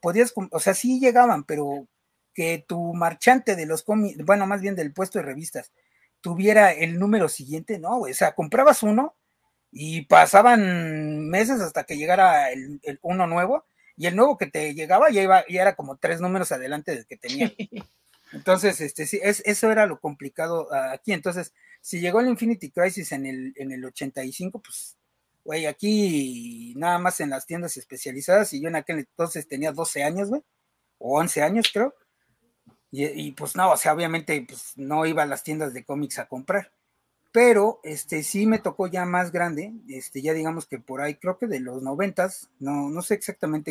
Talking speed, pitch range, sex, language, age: 185 wpm, 145-200 Hz, male, Spanish, 40-59